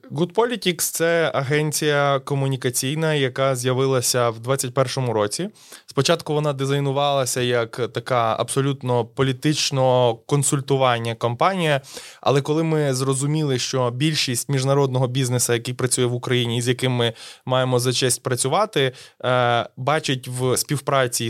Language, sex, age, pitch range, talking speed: Ukrainian, male, 20-39, 120-145 Hz, 115 wpm